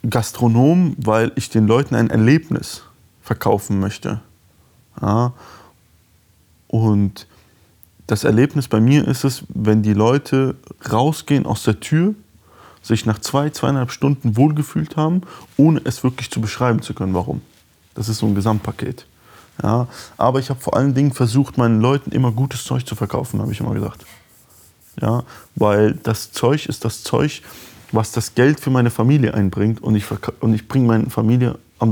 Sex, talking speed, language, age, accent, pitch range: male, 155 wpm, German, 20-39, German, 105-130 Hz